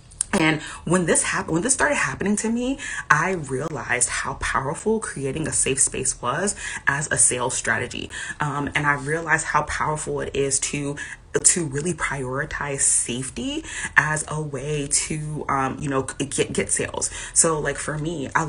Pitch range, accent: 135-165 Hz, American